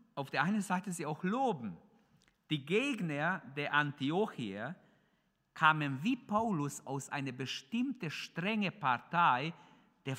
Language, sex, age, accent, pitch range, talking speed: German, male, 50-69, German, 155-235 Hz, 120 wpm